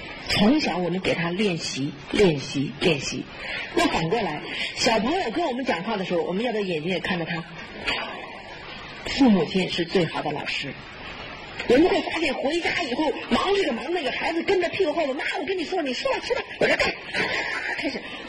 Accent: native